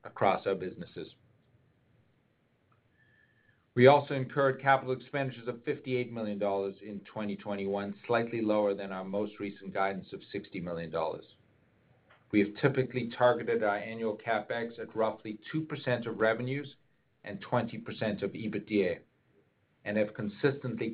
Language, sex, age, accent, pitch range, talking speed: English, male, 50-69, American, 105-125 Hz, 120 wpm